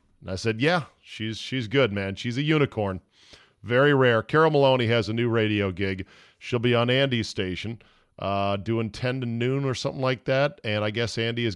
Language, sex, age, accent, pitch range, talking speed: English, male, 40-59, American, 105-135 Hz, 200 wpm